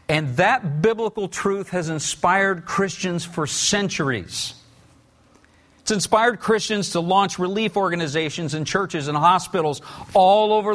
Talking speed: 125 wpm